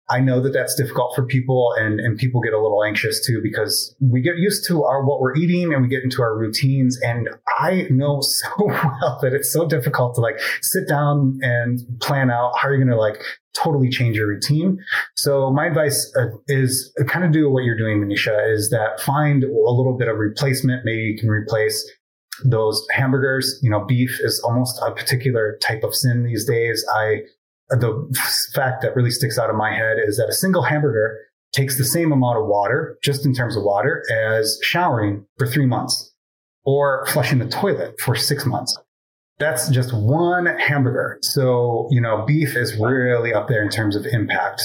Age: 30-49